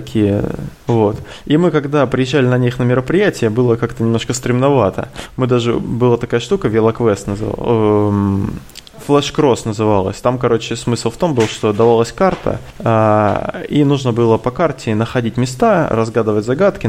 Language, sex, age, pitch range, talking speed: Russian, male, 20-39, 105-130 Hz, 155 wpm